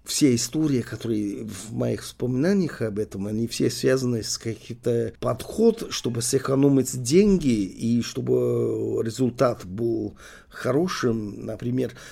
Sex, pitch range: male, 110-130 Hz